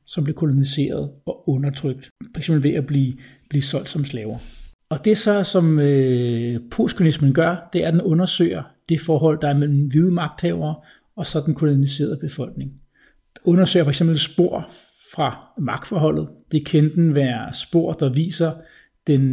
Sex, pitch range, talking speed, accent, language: male, 135-160 Hz, 160 wpm, native, Danish